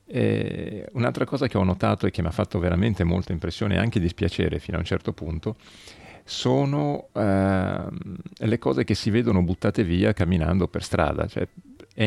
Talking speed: 175 wpm